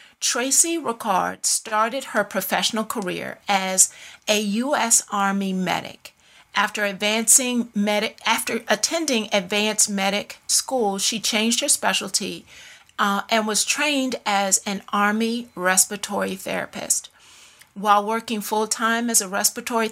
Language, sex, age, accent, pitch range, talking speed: English, female, 40-59, American, 200-235 Hz, 110 wpm